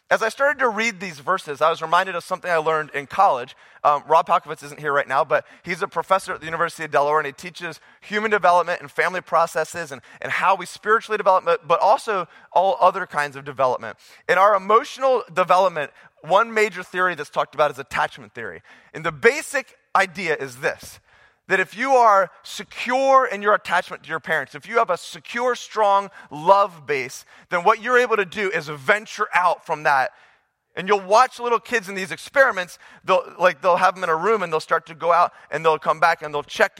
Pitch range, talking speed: 165-225 Hz, 215 wpm